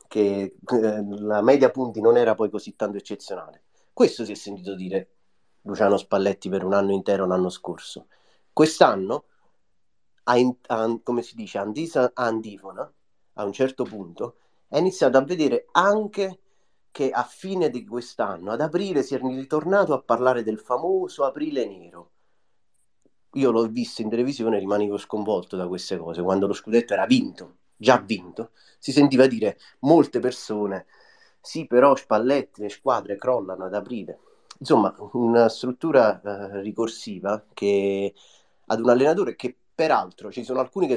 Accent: native